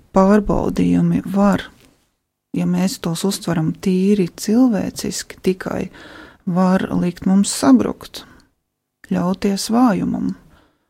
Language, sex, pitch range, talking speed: English, female, 180-215 Hz, 85 wpm